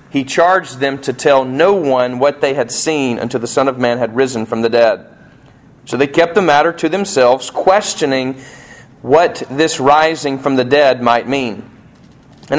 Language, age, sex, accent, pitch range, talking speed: English, 30-49, male, American, 120-150 Hz, 180 wpm